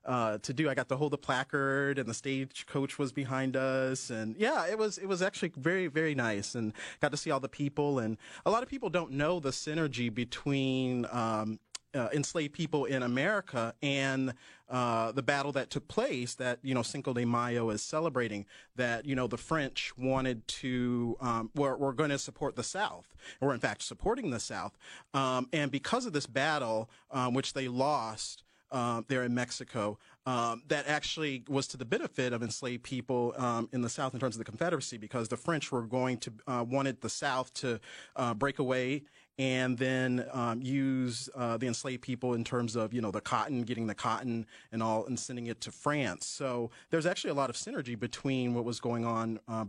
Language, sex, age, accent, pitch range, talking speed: English, male, 30-49, American, 120-140 Hz, 205 wpm